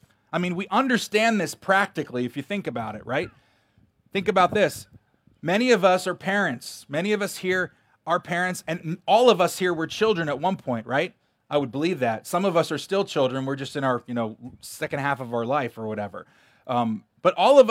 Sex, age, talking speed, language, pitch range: male, 30-49, 215 wpm, English, 130-185 Hz